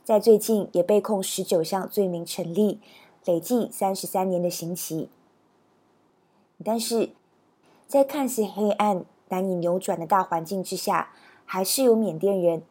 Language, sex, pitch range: Chinese, female, 175-205 Hz